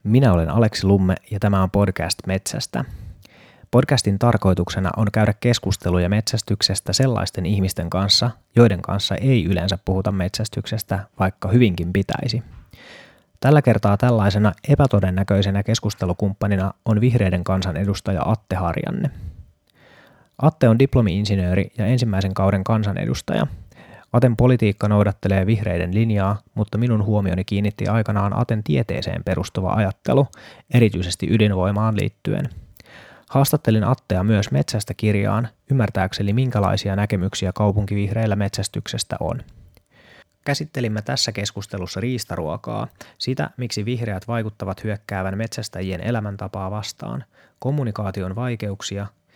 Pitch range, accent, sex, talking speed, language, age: 95-115 Hz, native, male, 105 wpm, Finnish, 30-49